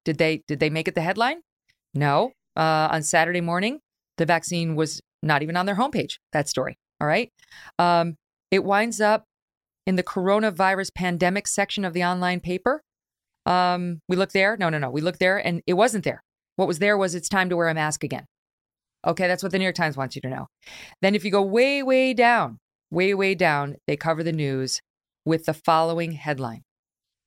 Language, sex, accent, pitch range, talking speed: English, female, American, 160-225 Hz, 200 wpm